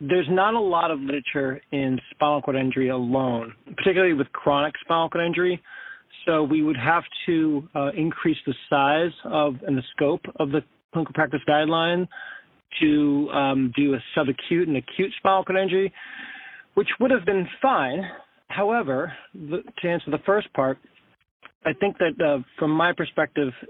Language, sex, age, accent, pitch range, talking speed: English, male, 40-59, American, 135-175 Hz, 160 wpm